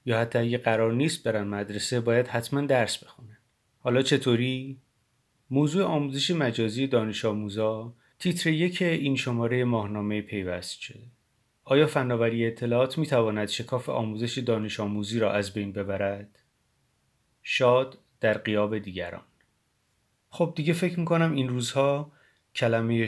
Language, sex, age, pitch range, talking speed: Persian, male, 30-49, 110-135 Hz, 125 wpm